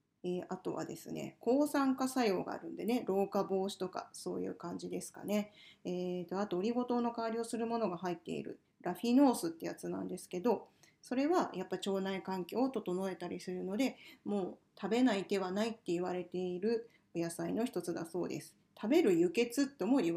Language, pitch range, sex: Japanese, 185-245 Hz, female